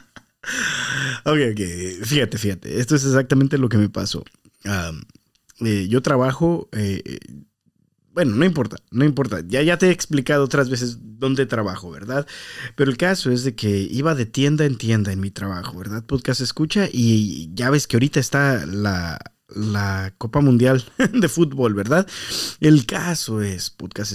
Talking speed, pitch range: 160 wpm, 115-165 Hz